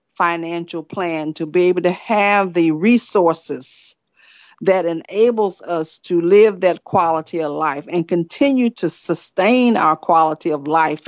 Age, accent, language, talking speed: 50-69, American, English, 140 wpm